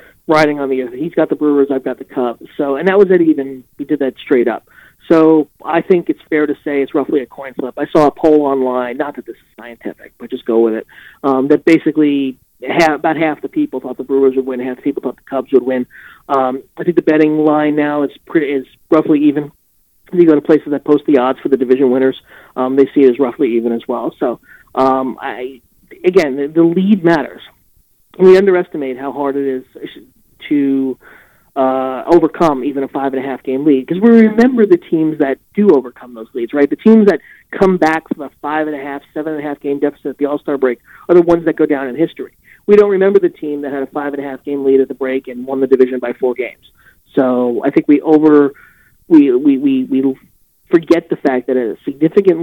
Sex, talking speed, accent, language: male, 240 wpm, American, English